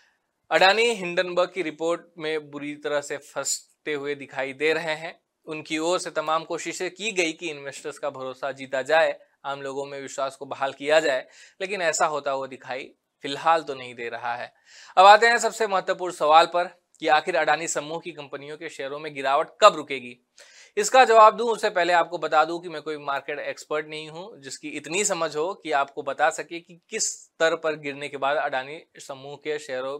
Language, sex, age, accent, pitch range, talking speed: Hindi, male, 20-39, native, 140-180 Hz, 200 wpm